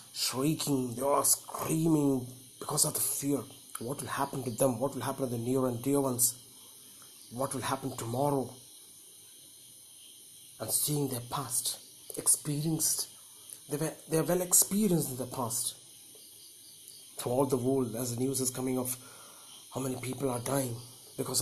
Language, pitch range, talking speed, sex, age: Malayalam, 125-150 Hz, 155 wpm, male, 30-49